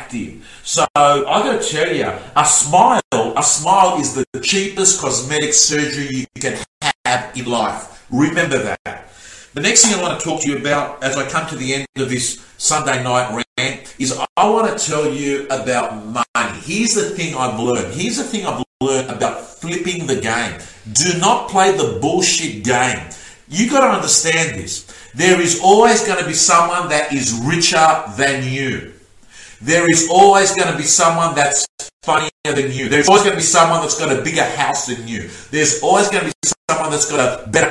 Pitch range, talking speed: 135-185 Hz, 195 wpm